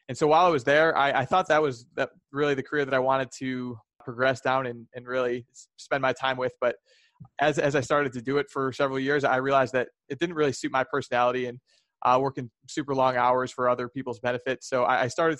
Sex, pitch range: male, 125-140 Hz